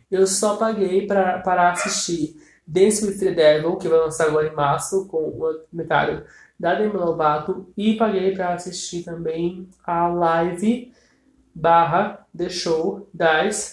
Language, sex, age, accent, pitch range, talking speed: Portuguese, male, 20-39, Brazilian, 165-235 Hz, 140 wpm